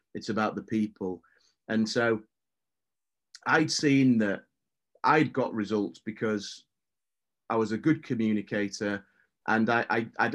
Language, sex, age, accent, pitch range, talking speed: English, male, 30-49, British, 110-135 Hz, 115 wpm